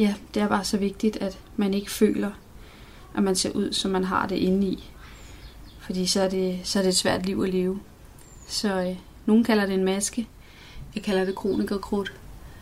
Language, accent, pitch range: Danish, native, 190-215 Hz